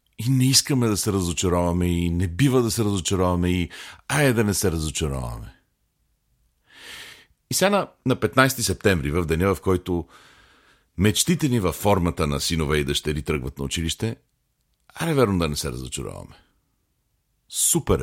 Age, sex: 50-69, male